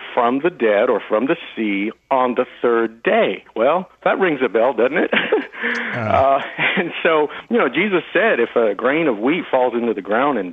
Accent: American